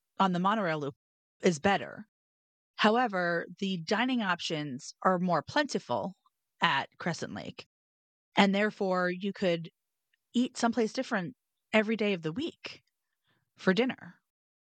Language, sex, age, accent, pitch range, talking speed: English, female, 30-49, American, 165-210 Hz, 125 wpm